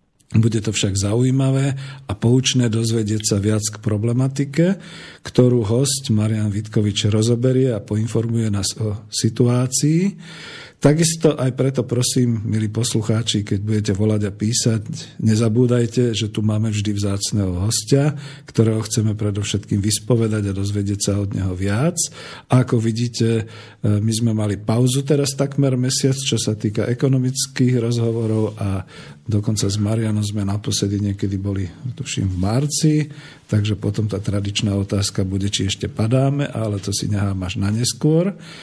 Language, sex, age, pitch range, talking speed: Slovak, male, 50-69, 105-130 Hz, 140 wpm